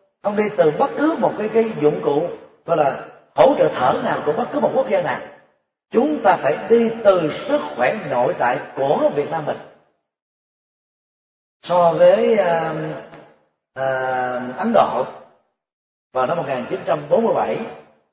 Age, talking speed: 40-59, 150 wpm